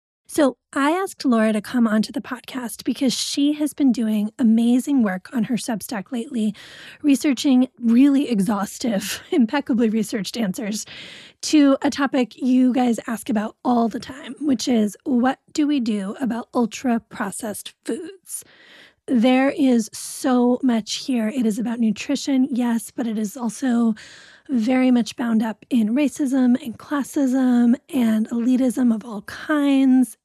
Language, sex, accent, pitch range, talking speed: English, female, American, 225-270 Hz, 145 wpm